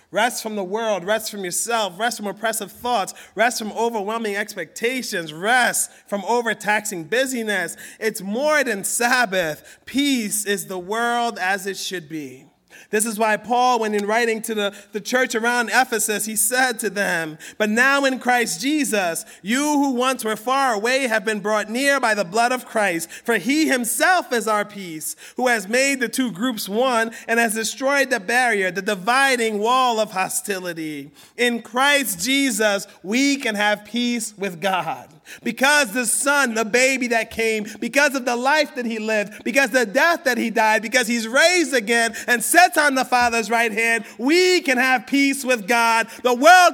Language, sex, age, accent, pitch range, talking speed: English, male, 30-49, American, 210-255 Hz, 180 wpm